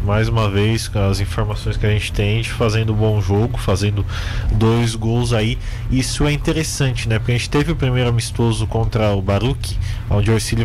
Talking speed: 205 wpm